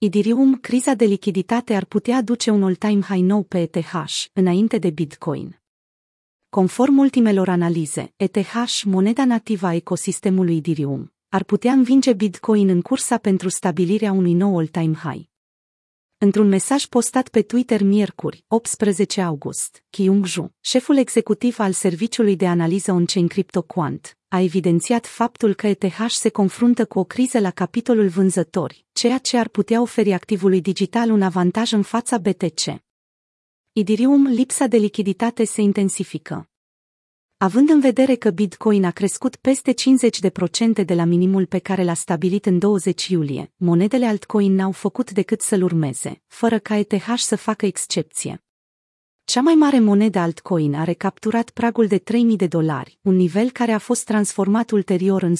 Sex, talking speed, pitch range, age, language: female, 150 wpm, 185-230 Hz, 30-49, Romanian